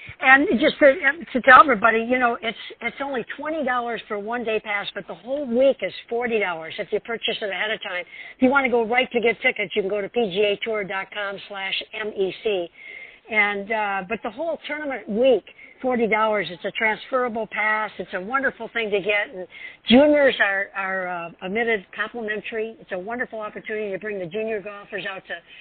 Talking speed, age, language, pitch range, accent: 210 wpm, 60-79, English, 200-235 Hz, American